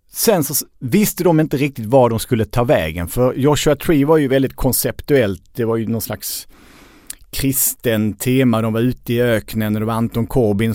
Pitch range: 110-155 Hz